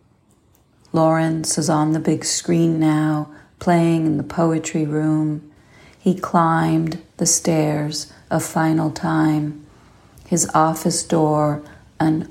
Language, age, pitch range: English, 40-59, 150-165 Hz